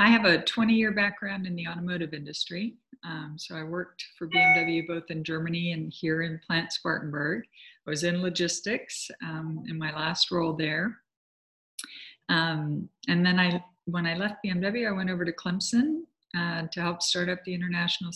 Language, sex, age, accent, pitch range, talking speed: English, female, 50-69, American, 155-190 Hz, 175 wpm